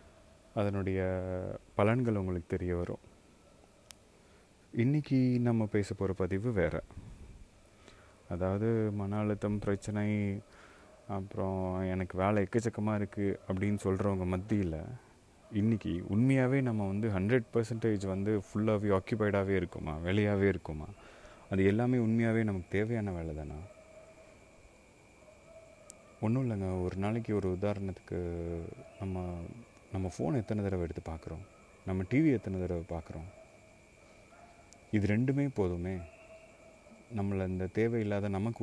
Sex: male